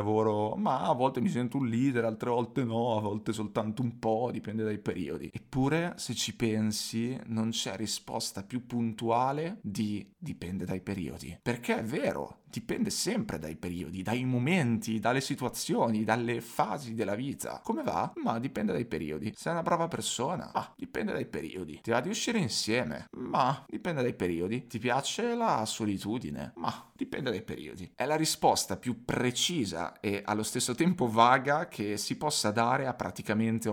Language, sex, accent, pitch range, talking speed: Italian, male, native, 105-130 Hz, 165 wpm